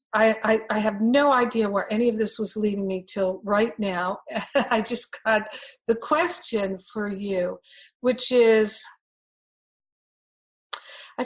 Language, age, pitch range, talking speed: English, 50-69, 205-255 Hz, 140 wpm